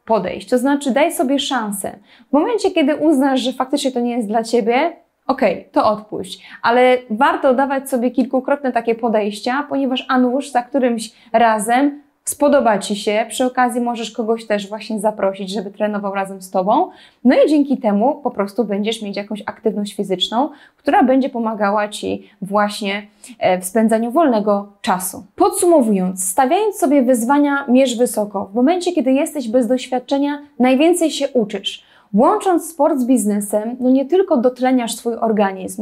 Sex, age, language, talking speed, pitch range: female, 20-39, Polish, 155 wpm, 220-270 Hz